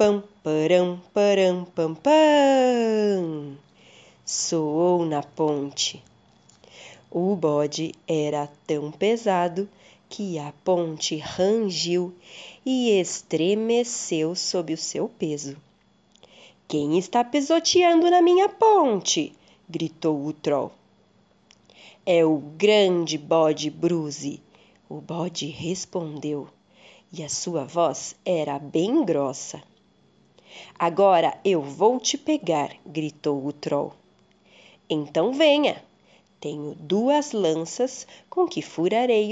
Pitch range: 155-225 Hz